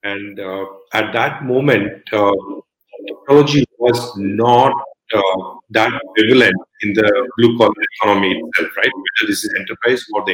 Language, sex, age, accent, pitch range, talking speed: English, male, 40-59, Indian, 110-165 Hz, 140 wpm